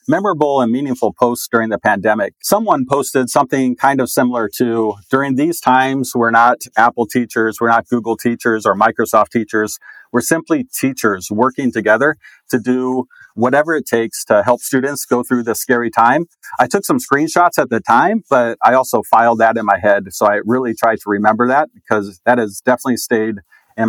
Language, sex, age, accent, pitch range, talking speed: English, male, 40-59, American, 110-130 Hz, 185 wpm